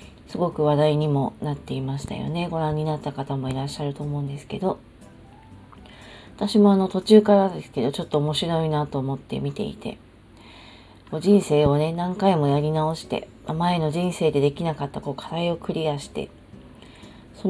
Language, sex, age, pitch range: Japanese, female, 40-59, 140-185 Hz